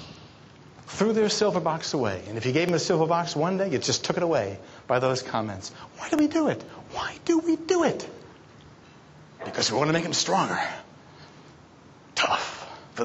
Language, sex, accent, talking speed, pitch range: English, male, American, 195 wpm, 125-180 Hz